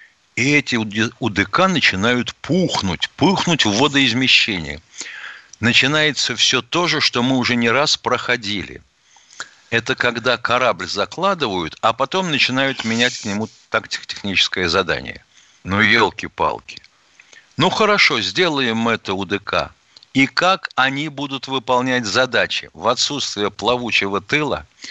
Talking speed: 115 wpm